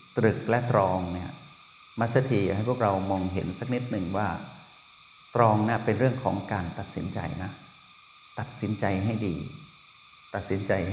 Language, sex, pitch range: Thai, male, 100-130 Hz